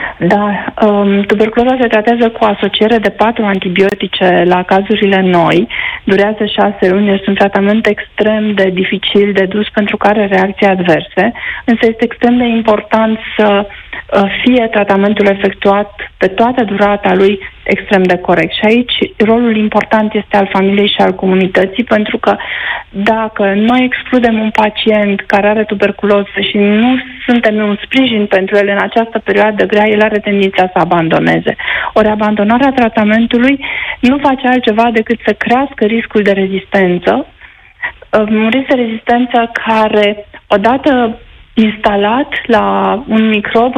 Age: 30-49